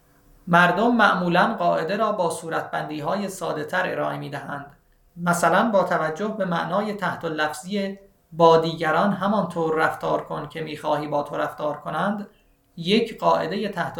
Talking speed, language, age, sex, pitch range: 145 wpm, Persian, 30-49, male, 150-200 Hz